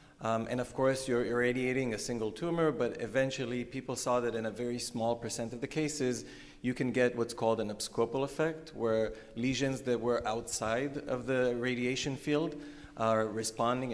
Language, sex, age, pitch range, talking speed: English, male, 30-49, 115-130 Hz, 175 wpm